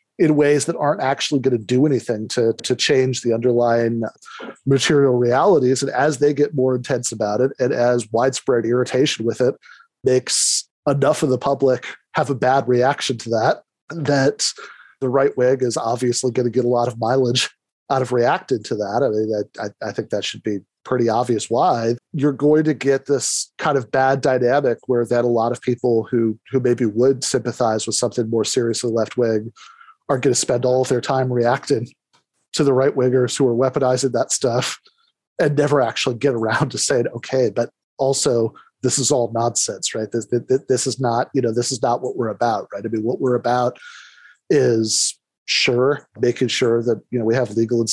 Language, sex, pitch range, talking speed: English, male, 115-135 Hz, 195 wpm